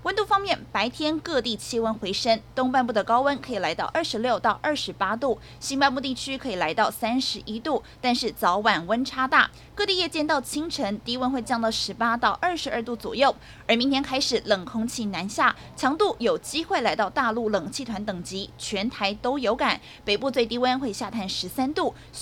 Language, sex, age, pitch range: Chinese, female, 20-39, 220-295 Hz